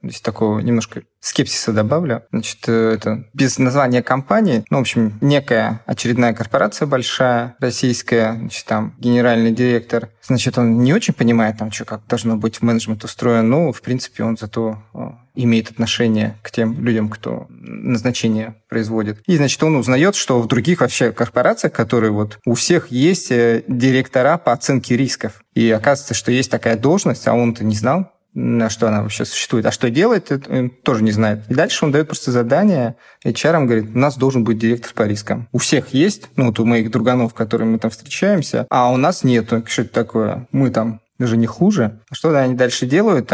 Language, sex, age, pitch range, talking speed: Russian, male, 20-39, 110-130 Hz, 180 wpm